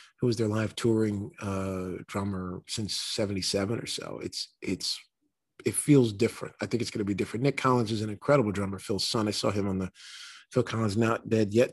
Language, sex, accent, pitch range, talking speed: English, male, American, 100-115 Hz, 205 wpm